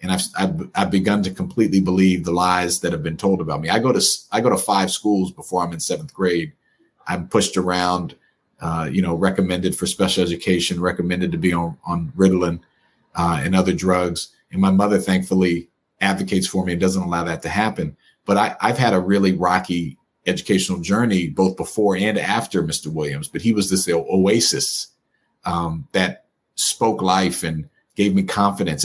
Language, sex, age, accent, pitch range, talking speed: English, male, 40-59, American, 85-95 Hz, 185 wpm